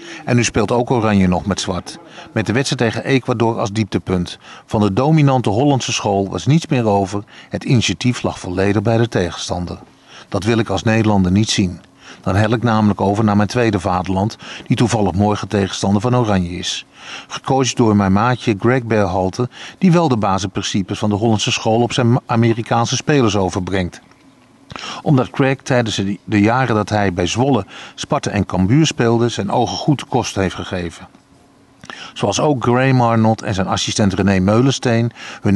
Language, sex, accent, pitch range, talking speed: Dutch, male, Dutch, 100-125 Hz, 170 wpm